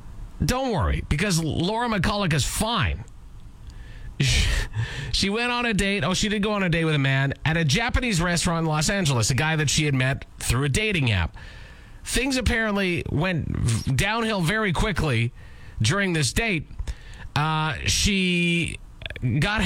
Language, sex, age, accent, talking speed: English, male, 40-59, American, 155 wpm